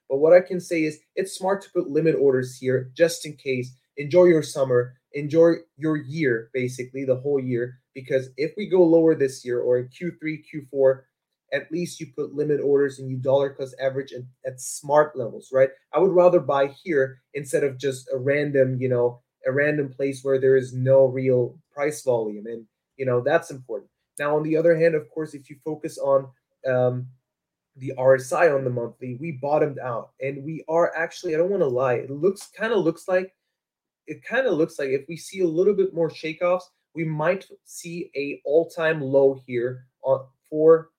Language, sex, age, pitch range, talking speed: English, male, 20-39, 130-165 Hz, 200 wpm